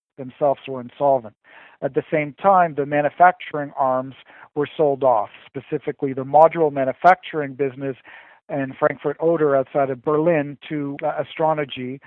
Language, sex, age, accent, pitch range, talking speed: English, male, 50-69, American, 140-160 Hz, 135 wpm